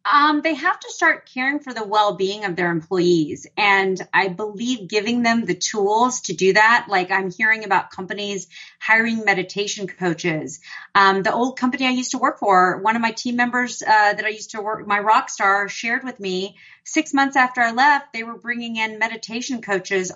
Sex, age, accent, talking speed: female, 30-49, American, 200 wpm